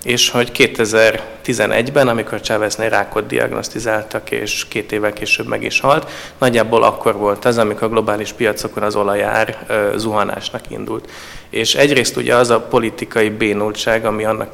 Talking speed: 145 wpm